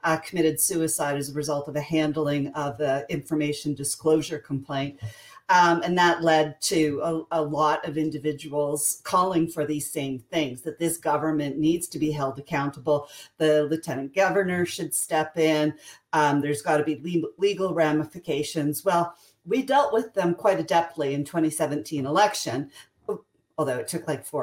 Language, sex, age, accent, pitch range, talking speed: English, female, 40-59, American, 150-180 Hz, 160 wpm